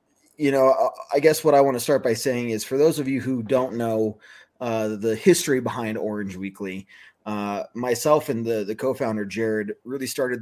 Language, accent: English, American